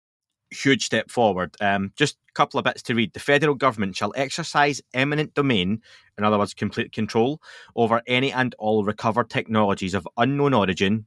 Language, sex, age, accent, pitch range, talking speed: English, male, 20-39, British, 105-130 Hz, 175 wpm